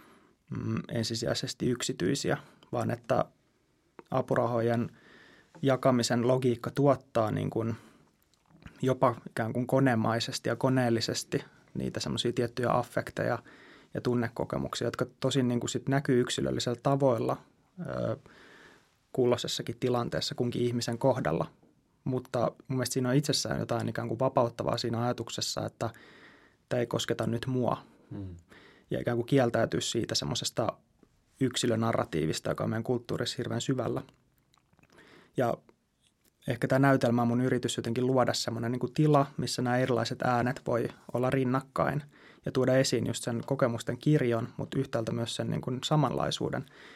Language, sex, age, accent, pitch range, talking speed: Finnish, male, 20-39, native, 115-130 Hz, 120 wpm